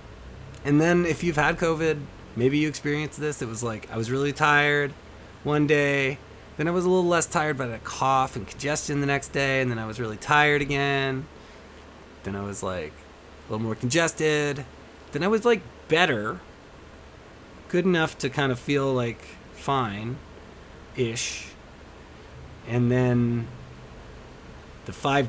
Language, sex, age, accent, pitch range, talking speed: English, male, 30-49, American, 95-135 Hz, 155 wpm